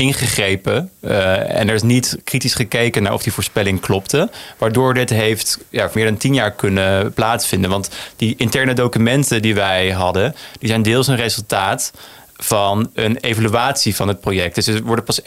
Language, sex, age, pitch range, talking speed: Dutch, male, 30-49, 105-130 Hz, 175 wpm